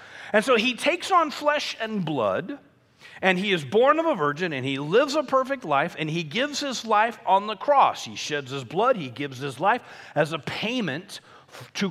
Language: English